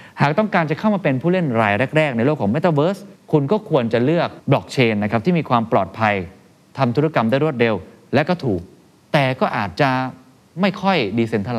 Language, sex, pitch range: Thai, male, 115-150 Hz